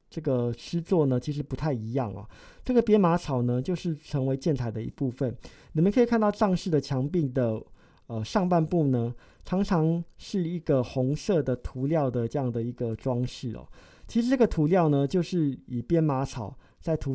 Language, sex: Chinese, male